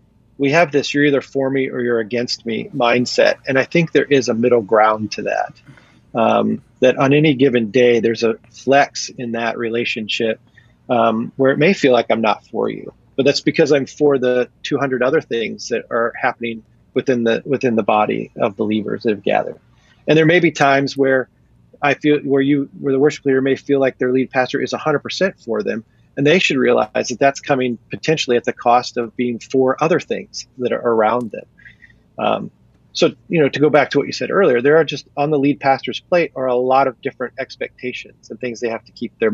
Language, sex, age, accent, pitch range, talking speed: English, male, 30-49, American, 115-140 Hz, 220 wpm